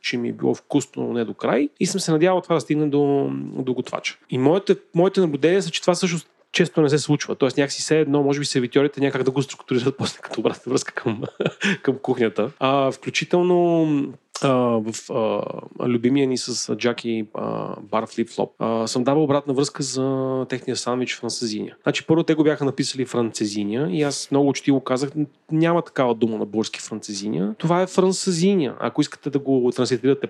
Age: 30-49